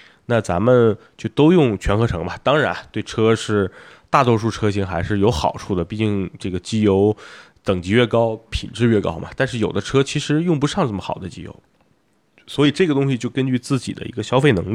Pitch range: 100-145 Hz